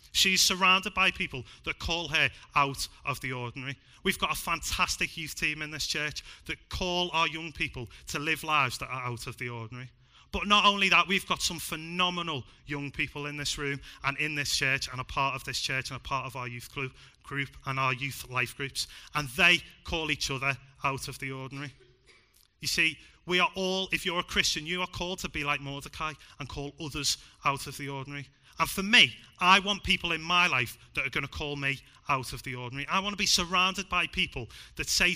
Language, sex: English, male